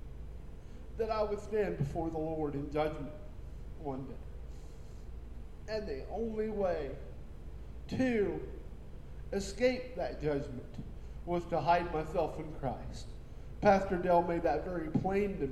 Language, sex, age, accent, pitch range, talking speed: English, male, 50-69, American, 145-180 Hz, 125 wpm